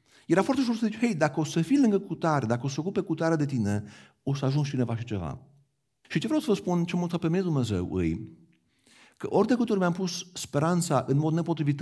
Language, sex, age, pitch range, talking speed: Romanian, male, 50-69, 125-170 Hz, 250 wpm